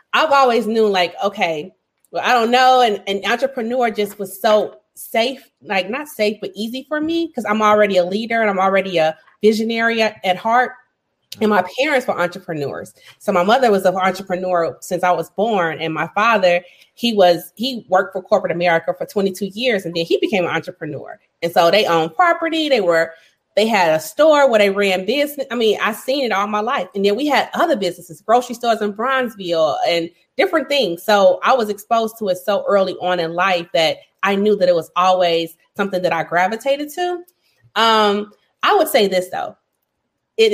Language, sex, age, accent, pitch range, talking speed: English, female, 30-49, American, 180-250 Hz, 200 wpm